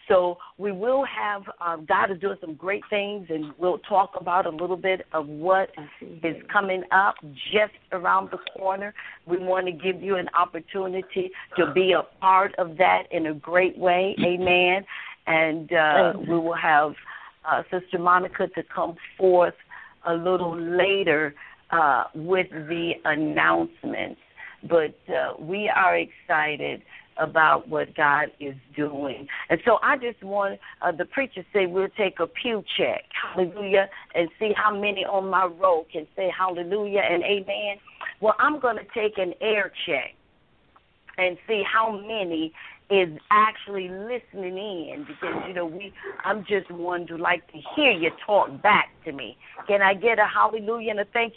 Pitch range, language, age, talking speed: 170-205 Hz, English, 50-69, 165 wpm